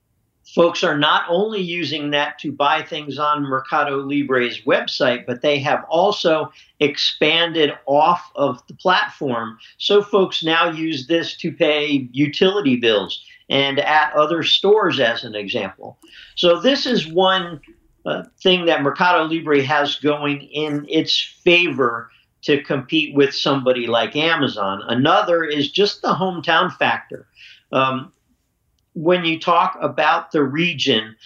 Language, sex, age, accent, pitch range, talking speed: English, male, 50-69, American, 135-170 Hz, 135 wpm